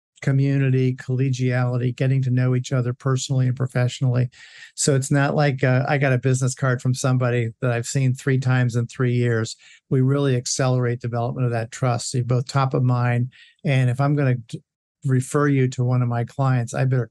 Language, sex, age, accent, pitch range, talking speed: English, male, 50-69, American, 125-140 Hz, 200 wpm